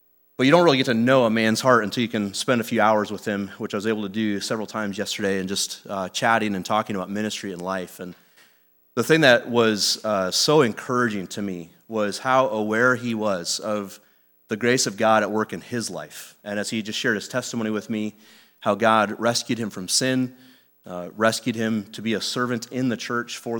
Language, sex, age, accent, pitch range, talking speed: English, male, 30-49, American, 100-120 Hz, 225 wpm